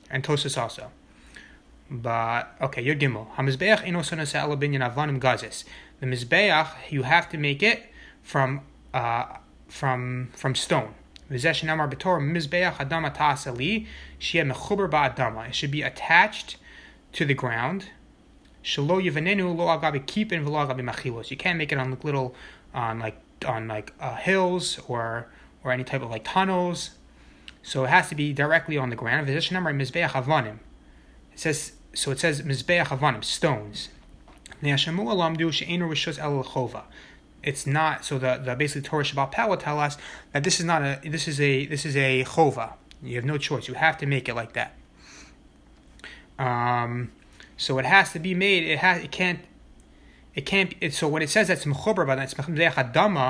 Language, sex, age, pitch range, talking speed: English, male, 30-49, 130-165 Hz, 155 wpm